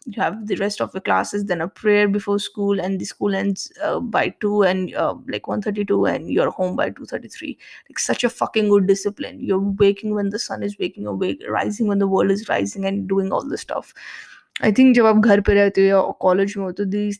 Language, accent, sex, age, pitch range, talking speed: English, Indian, female, 20-39, 190-210 Hz, 215 wpm